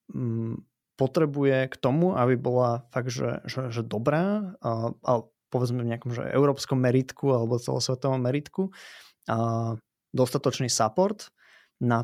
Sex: male